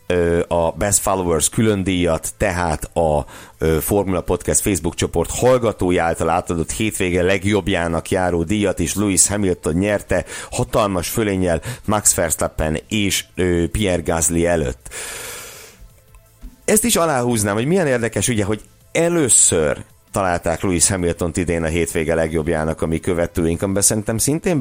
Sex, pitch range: male, 85-110 Hz